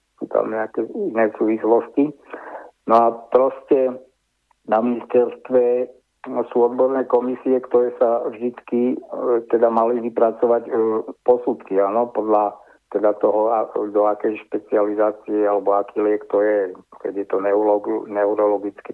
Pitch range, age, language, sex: 110-125 Hz, 60-79, Slovak, male